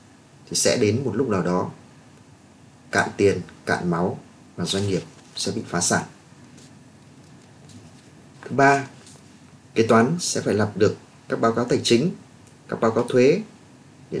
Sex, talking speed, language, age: male, 150 wpm, Vietnamese, 20-39